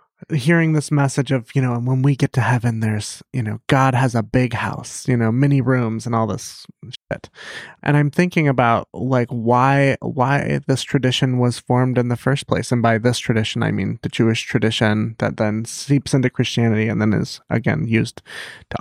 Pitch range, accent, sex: 120-140 Hz, American, male